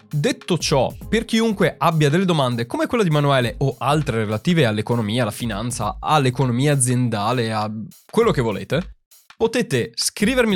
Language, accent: Italian, native